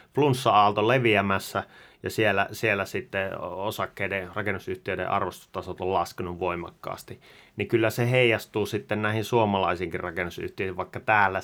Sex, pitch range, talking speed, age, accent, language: male, 90-105 Hz, 115 wpm, 30-49, native, Finnish